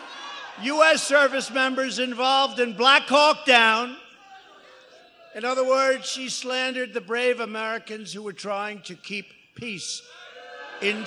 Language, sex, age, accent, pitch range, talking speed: English, male, 60-79, American, 220-275 Hz, 125 wpm